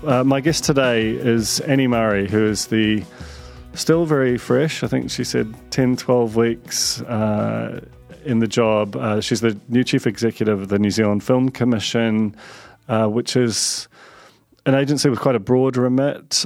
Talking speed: 170 wpm